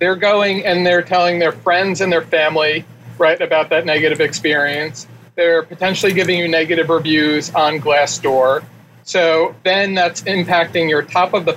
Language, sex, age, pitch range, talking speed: English, male, 40-59, 150-180 Hz, 160 wpm